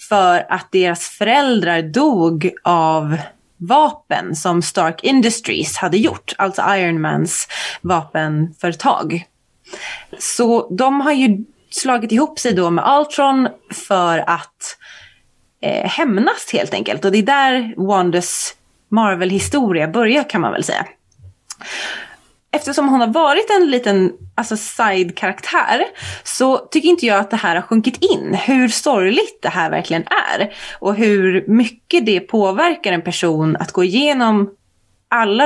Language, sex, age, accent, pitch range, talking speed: Swedish, female, 20-39, native, 175-260 Hz, 130 wpm